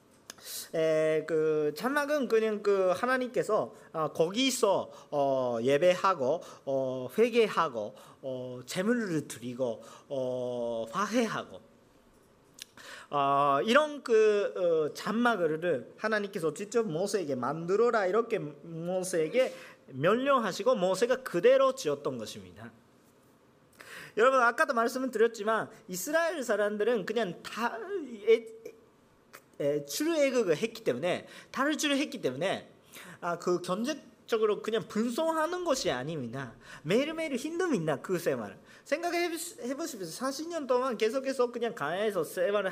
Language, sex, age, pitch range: Korean, male, 40-59, 165-270 Hz